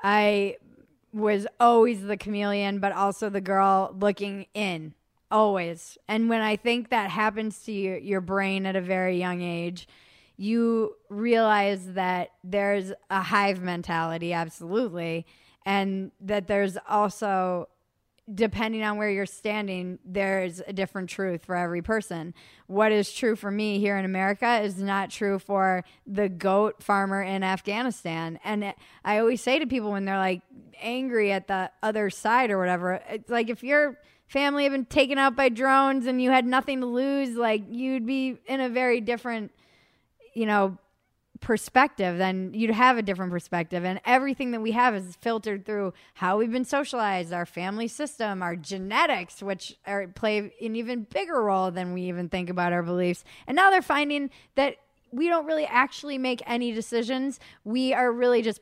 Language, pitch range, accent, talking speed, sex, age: English, 190-235 Hz, American, 170 wpm, female, 20-39